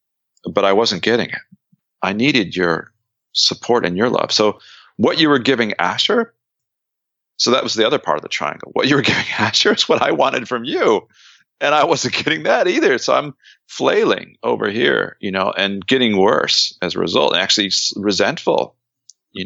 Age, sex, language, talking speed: 40-59, male, English, 190 wpm